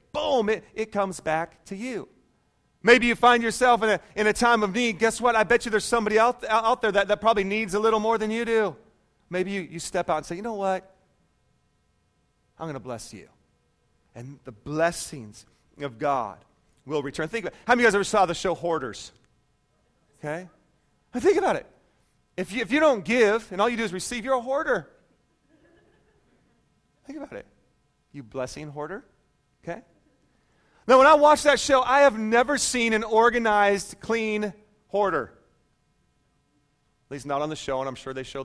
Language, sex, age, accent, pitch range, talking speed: English, male, 30-49, American, 150-235 Hz, 195 wpm